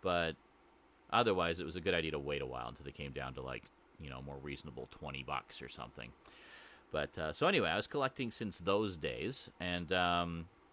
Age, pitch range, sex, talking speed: 30-49, 75-90 Hz, male, 205 wpm